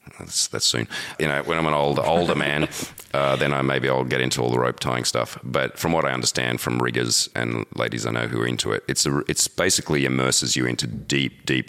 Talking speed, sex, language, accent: 240 wpm, male, English, Australian